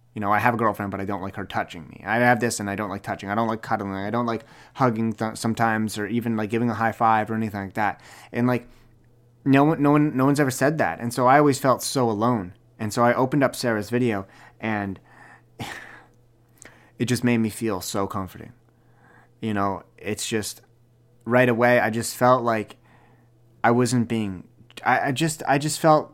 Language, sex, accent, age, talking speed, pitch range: English, male, American, 30-49, 215 wpm, 115-135 Hz